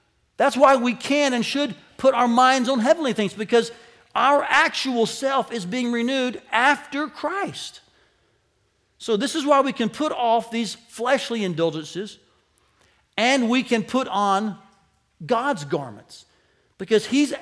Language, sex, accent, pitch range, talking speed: English, male, American, 150-235 Hz, 140 wpm